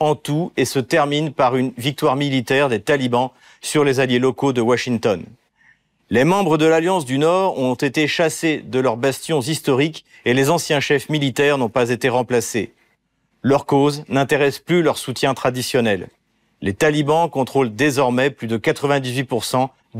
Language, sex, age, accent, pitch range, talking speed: French, male, 40-59, French, 125-155 Hz, 160 wpm